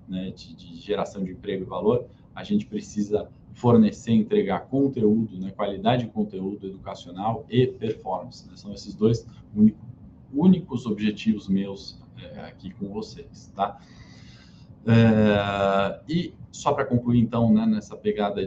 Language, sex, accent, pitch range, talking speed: Portuguese, male, Brazilian, 100-120 Hz, 140 wpm